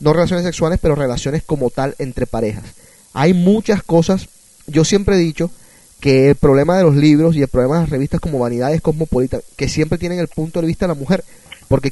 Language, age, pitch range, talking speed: Spanish, 30-49, 135-175 Hz, 210 wpm